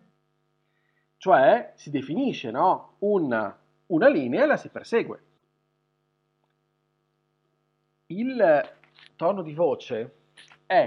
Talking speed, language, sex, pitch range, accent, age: 85 wpm, Italian, male, 140-185 Hz, native, 40-59